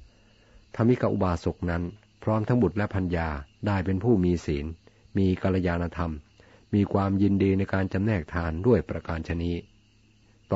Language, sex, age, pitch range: Thai, male, 60-79, 85-105 Hz